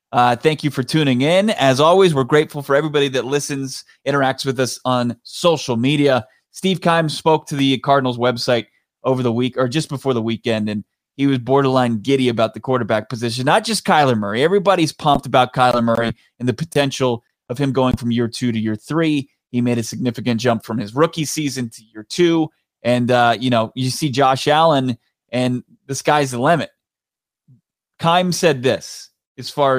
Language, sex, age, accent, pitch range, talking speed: English, male, 30-49, American, 120-145 Hz, 190 wpm